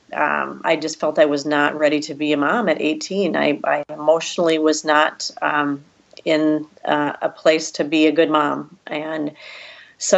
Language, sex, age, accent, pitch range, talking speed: English, female, 40-59, American, 150-165 Hz, 185 wpm